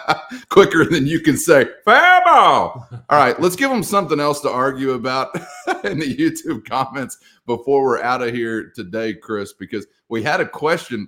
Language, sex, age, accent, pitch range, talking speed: English, male, 30-49, American, 105-140 Hz, 170 wpm